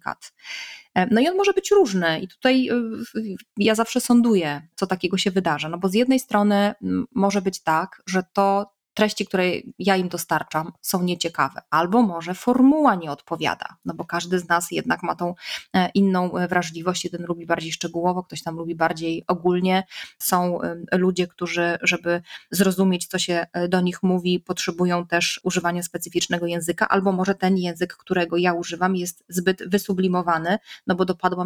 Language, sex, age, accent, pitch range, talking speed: Polish, female, 20-39, native, 175-200 Hz, 160 wpm